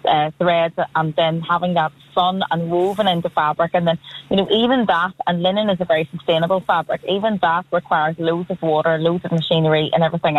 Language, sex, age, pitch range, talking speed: English, female, 30-49, 165-195 Hz, 195 wpm